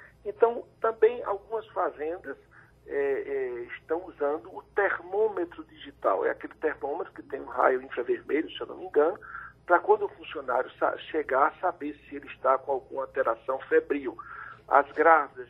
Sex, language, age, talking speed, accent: male, Portuguese, 60-79, 145 wpm, Brazilian